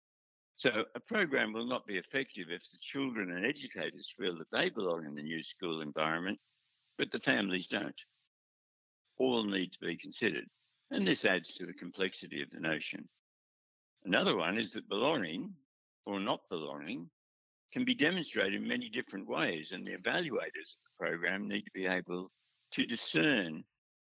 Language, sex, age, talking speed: English, male, 60-79, 165 wpm